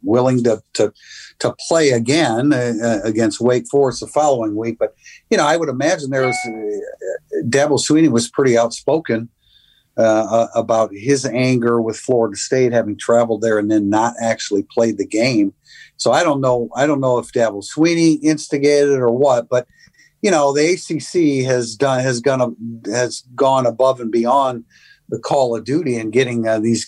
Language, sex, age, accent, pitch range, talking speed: English, male, 50-69, American, 115-140 Hz, 180 wpm